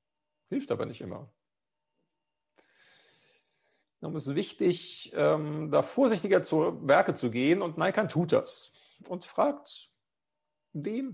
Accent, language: German, German